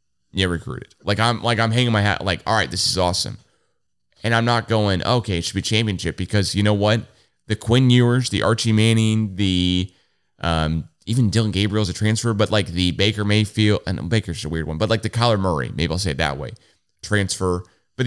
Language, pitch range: English, 95-115 Hz